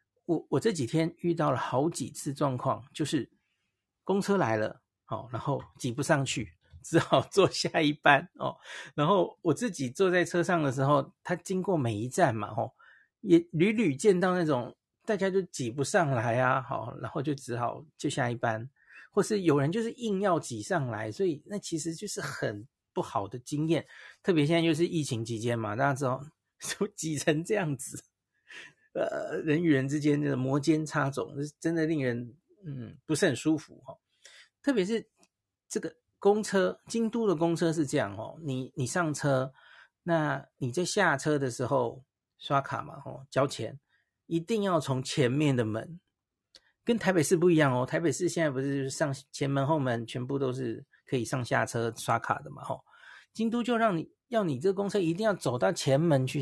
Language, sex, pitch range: Chinese, male, 130-175 Hz